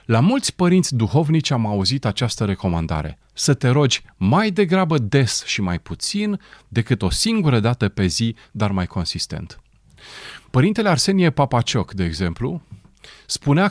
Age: 40-59